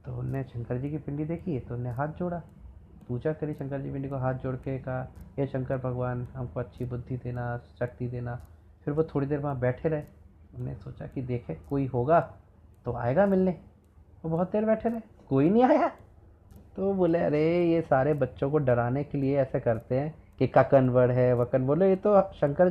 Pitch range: 120-165 Hz